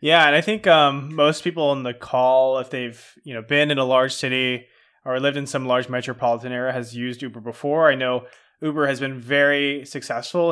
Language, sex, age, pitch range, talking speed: English, male, 20-39, 125-145 Hz, 210 wpm